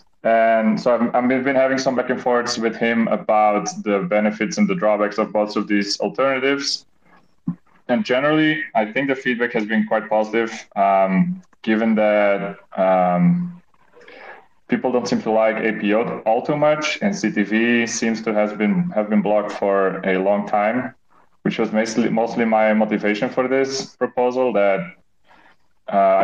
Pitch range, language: 105-120 Hz, English